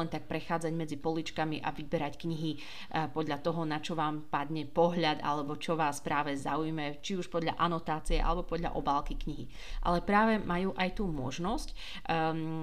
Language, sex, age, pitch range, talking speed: Slovak, female, 30-49, 160-185 Hz, 165 wpm